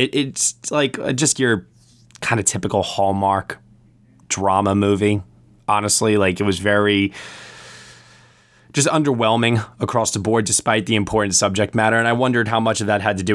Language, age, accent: English, 20-39, American